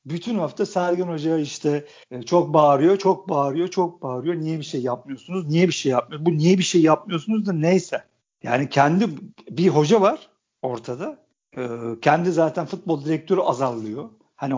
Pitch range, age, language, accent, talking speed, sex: 140-190 Hz, 50-69, Turkish, native, 160 wpm, male